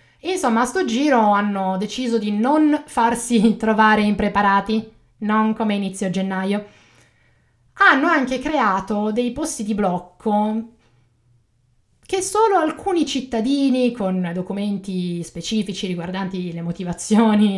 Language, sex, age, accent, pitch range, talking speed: Italian, female, 20-39, native, 200-275 Hz, 110 wpm